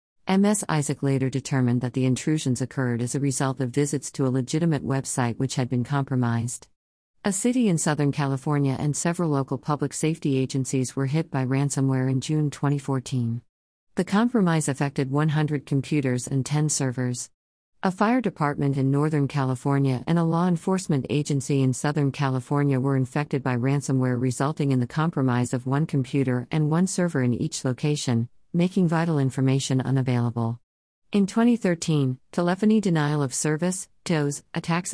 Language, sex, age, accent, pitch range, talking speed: English, female, 50-69, American, 130-155 Hz, 155 wpm